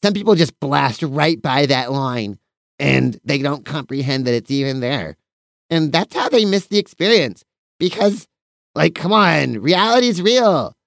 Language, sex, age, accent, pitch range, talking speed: English, male, 30-49, American, 130-185 Hz, 160 wpm